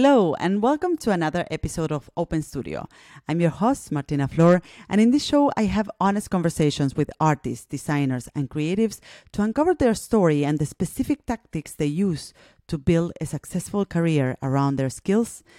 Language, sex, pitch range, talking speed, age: English, female, 150-200 Hz, 175 wpm, 30-49